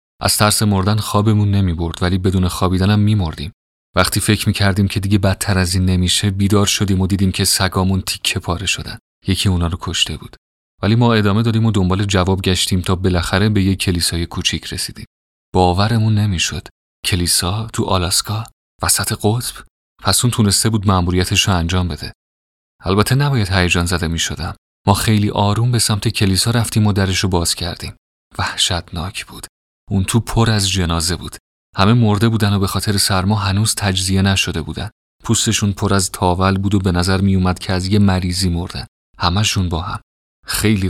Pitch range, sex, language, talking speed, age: 90-105 Hz, male, Persian, 175 wpm, 30-49